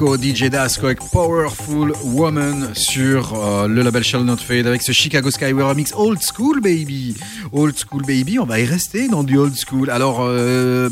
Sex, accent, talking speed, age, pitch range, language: male, French, 180 wpm, 30-49, 120-155 Hz, French